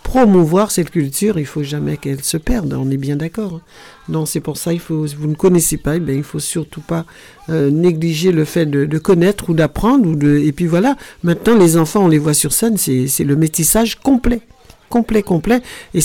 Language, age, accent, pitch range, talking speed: French, 60-79, French, 145-185 Hz, 225 wpm